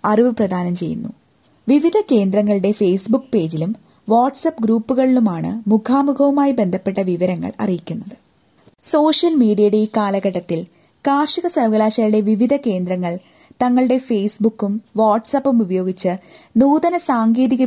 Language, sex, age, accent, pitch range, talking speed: Malayalam, female, 20-39, native, 200-265 Hz, 90 wpm